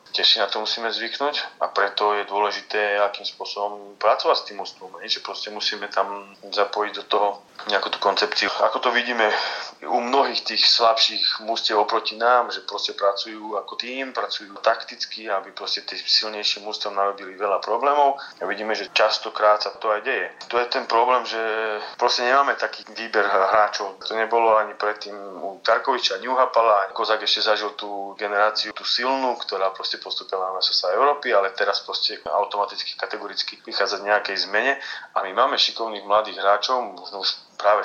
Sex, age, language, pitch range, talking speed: male, 30-49, Slovak, 100-110 Hz, 165 wpm